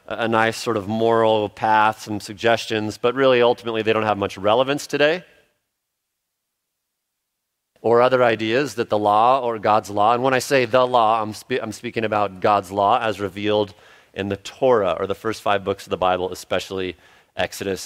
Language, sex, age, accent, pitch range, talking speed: English, male, 40-59, American, 105-125 Hz, 180 wpm